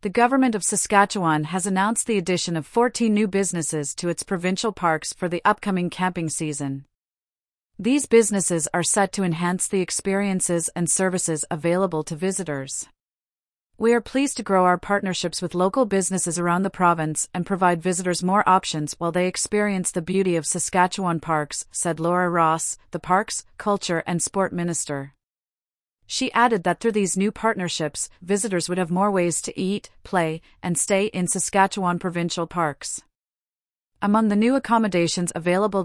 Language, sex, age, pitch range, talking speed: English, female, 40-59, 170-200 Hz, 160 wpm